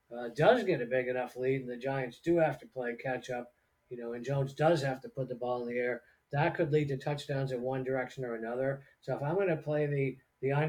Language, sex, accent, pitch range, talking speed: English, male, American, 120-135 Hz, 265 wpm